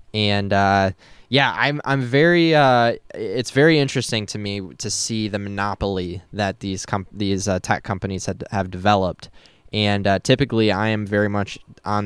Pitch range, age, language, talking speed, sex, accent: 100-115 Hz, 10-29, English, 170 wpm, male, American